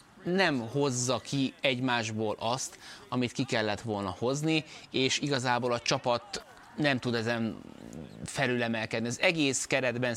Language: Hungarian